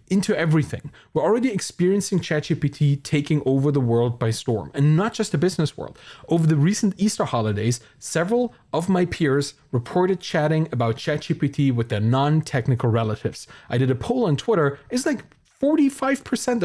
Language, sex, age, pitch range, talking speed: English, male, 30-49, 120-190 Hz, 160 wpm